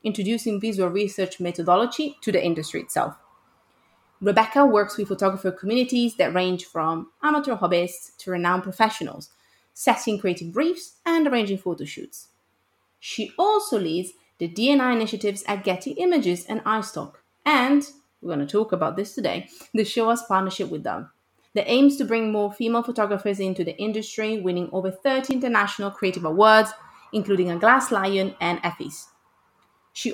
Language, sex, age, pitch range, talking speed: English, female, 30-49, 180-240 Hz, 150 wpm